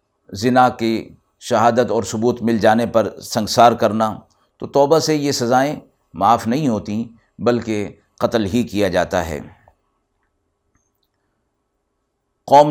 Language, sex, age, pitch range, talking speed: Urdu, male, 50-69, 100-120 Hz, 120 wpm